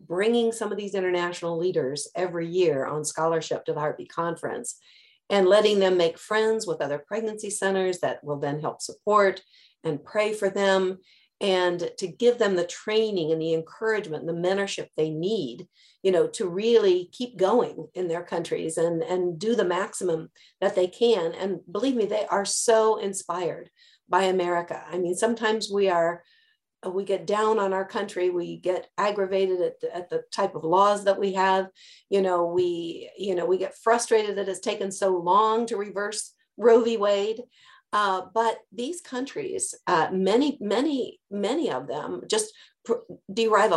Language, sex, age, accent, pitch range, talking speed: English, female, 50-69, American, 175-220 Hz, 175 wpm